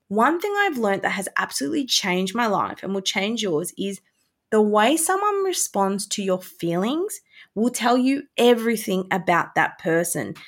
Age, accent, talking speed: 20-39, Australian, 165 wpm